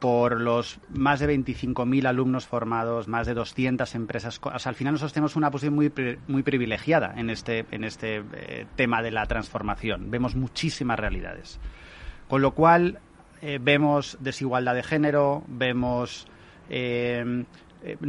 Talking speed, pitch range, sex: 145 wpm, 115-145 Hz, male